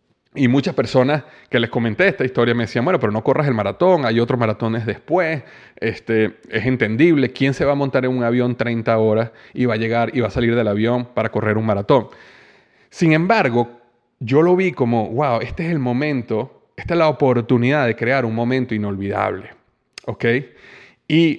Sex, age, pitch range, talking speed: male, 30-49, 120-150 Hz, 190 wpm